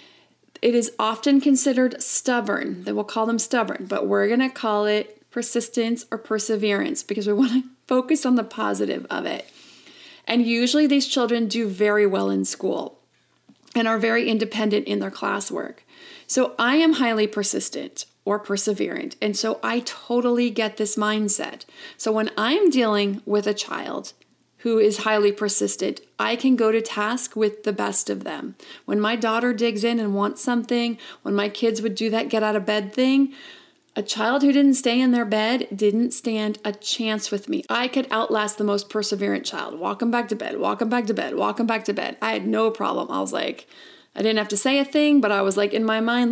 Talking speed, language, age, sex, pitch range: 200 wpm, English, 30-49, female, 210-250 Hz